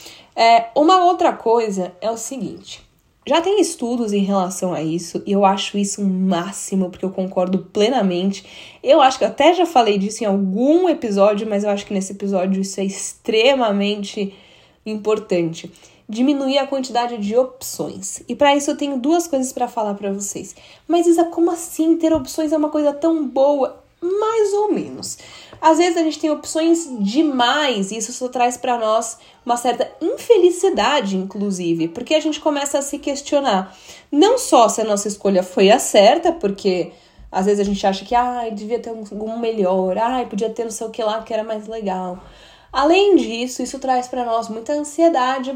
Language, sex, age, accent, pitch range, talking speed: Portuguese, female, 10-29, Brazilian, 200-280 Hz, 185 wpm